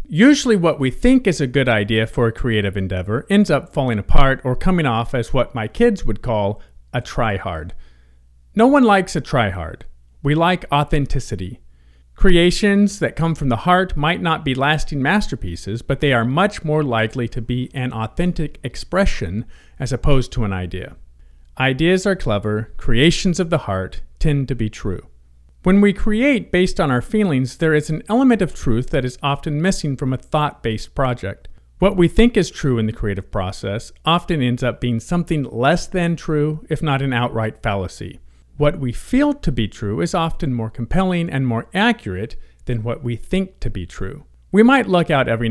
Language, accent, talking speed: English, American, 185 wpm